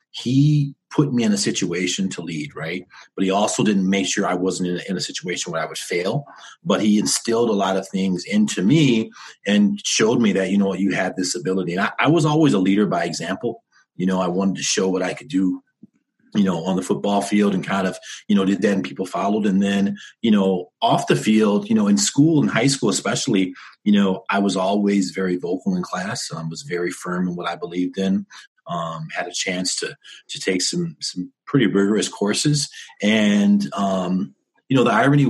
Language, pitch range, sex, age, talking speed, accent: English, 90-105 Hz, male, 30-49, 220 wpm, American